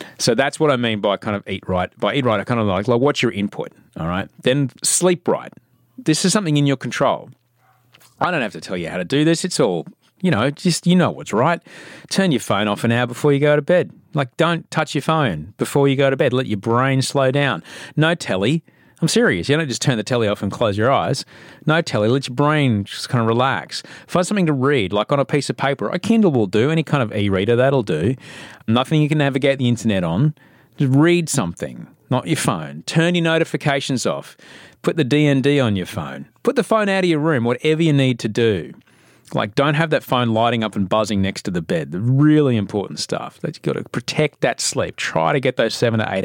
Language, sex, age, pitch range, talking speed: English, male, 30-49, 115-155 Hz, 240 wpm